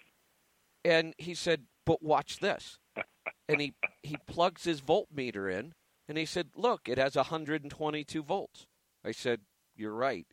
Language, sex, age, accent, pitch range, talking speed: English, male, 50-69, American, 130-180 Hz, 145 wpm